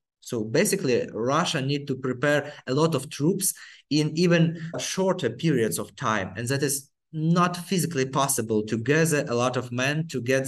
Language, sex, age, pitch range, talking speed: English, male, 20-39, 125-160 Hz, 170 wpm